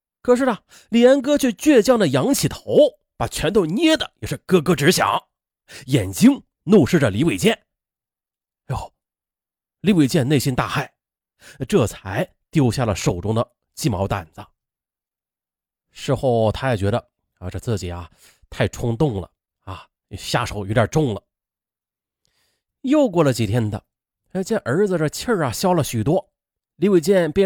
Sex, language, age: male, Chinese, 30-49